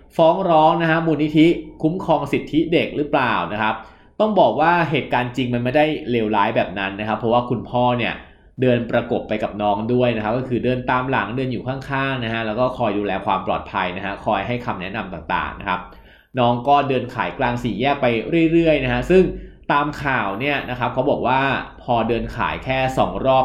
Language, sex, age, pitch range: Thai, male, 20-39, 115-145 Hz